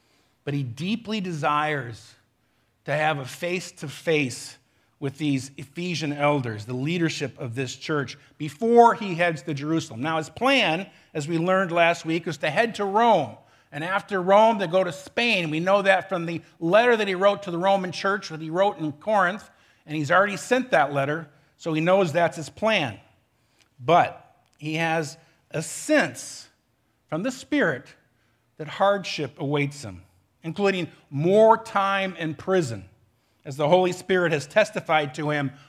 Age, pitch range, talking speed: 50-69, 140-185 Hz, 165 wpm